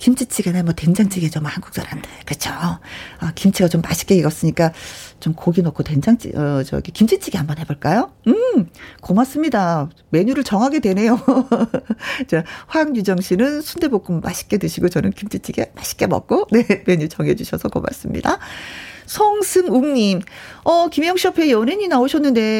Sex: female